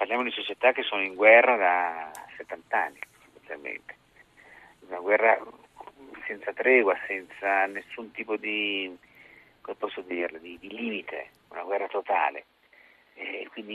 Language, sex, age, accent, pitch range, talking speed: Italian, male, 50-69, native, 95-125 Hz, 110 wpm